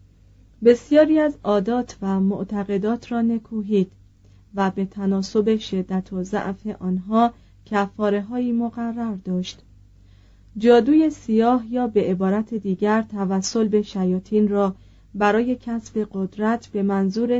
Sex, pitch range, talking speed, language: female, 185-230 Hz, 115 wpm, Persian